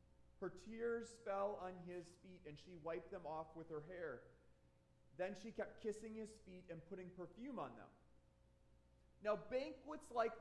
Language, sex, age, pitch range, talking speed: English, male, 30-49, 165-220 Hz, 160 wpm